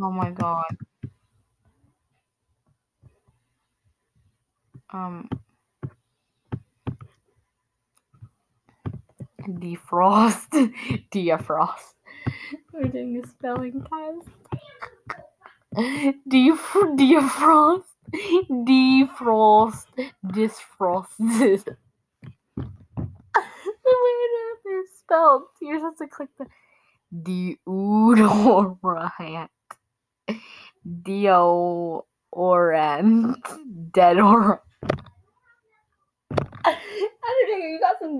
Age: 20-39